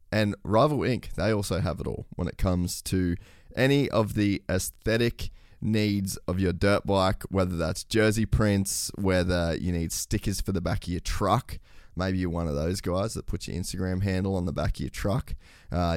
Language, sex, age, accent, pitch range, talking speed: English, male, 20-39, Australian, 85-105 Hz, 200 wpm